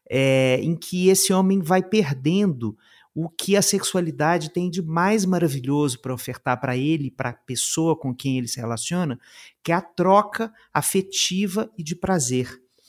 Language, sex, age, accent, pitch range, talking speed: Portuguese, male, 50-69, Brazilian, 130-180 Hz, 160 wpm